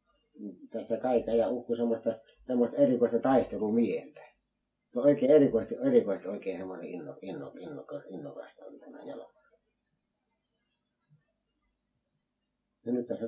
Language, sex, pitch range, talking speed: Finnish, male, 95-125 Hz, 85 wpm